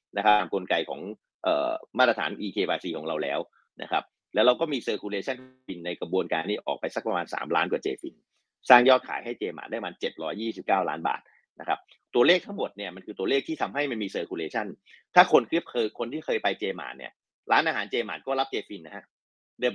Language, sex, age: Thai, male, 30-49